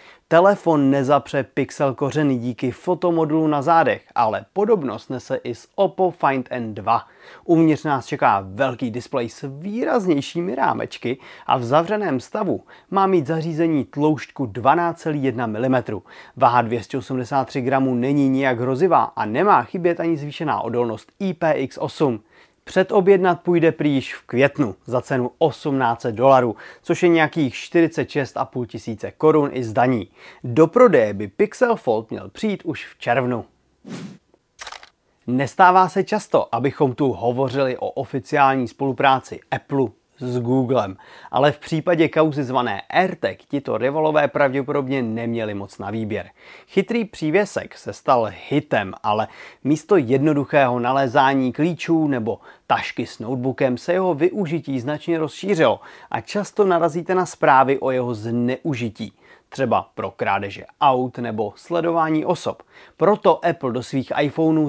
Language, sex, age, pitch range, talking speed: Czech, male, 30-49, 125-165 Hz, 130 wpm